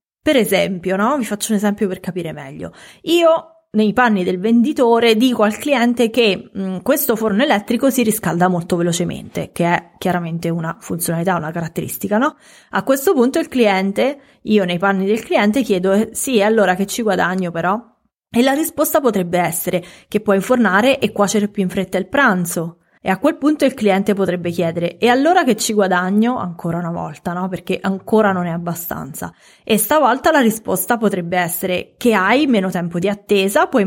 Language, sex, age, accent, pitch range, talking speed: English, female, 20-39, Italian, 185-230 Hz, 185 wpm